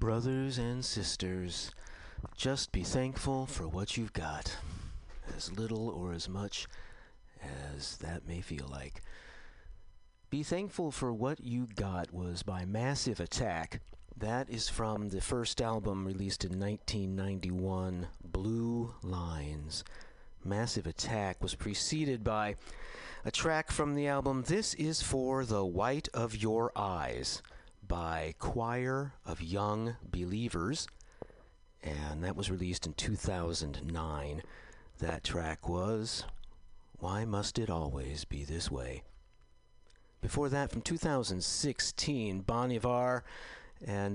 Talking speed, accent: 115 wpm, American